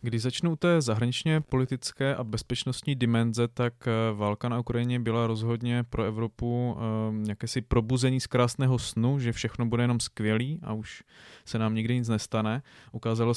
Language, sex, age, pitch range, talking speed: Czech, male, 20-39, 110-125 Hz, 155 wpm